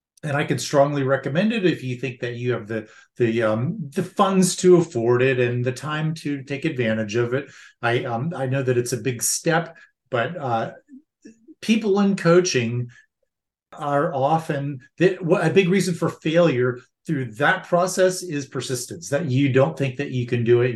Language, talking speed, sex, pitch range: English, 180 wpm, male, 125-170 Hz